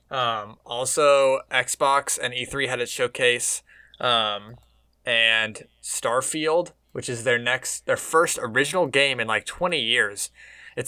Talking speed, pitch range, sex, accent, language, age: 130 wpm, 110-135 Hz, male, American, English, 20-39